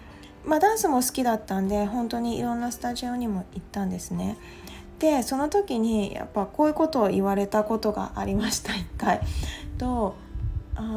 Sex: female